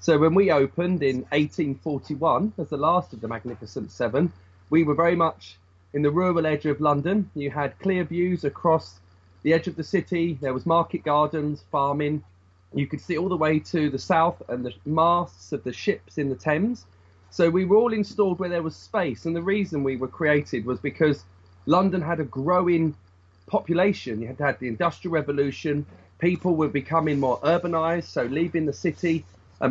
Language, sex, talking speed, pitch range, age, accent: English, male, 190 wpm, 130-170 Hz, 30-49, British